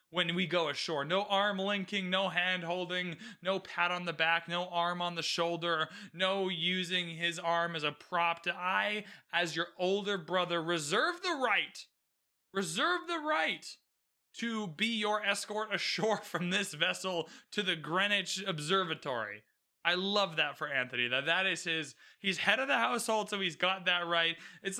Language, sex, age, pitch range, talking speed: English, male, 20-39, 165-205 Hz, 170 wpm